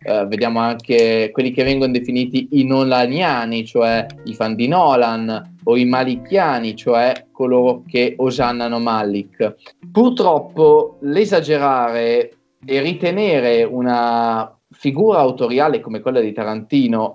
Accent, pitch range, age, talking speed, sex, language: native, 115-175 Hz, 20-39, 115 wpm, male, Italian